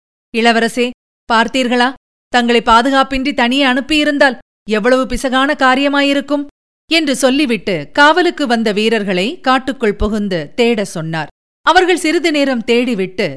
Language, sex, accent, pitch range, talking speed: Tamil, female, native, 195-255 Hz, 100 wpm